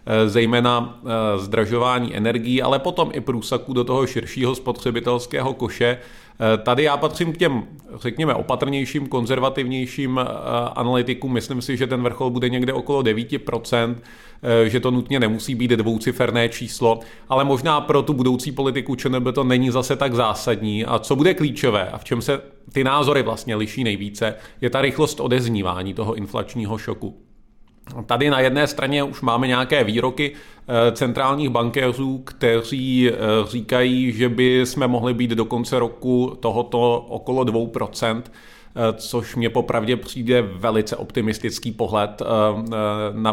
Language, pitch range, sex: Czech, 115-130 Hz, male